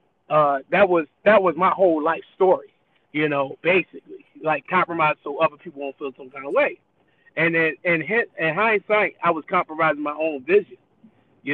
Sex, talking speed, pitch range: male, 185 wpm, 150-185 Hz